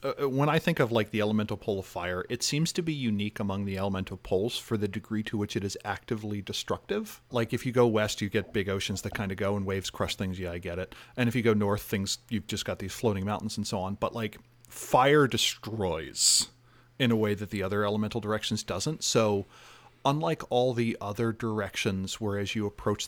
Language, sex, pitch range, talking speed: English, male, 100-115 Hz, 225 wpm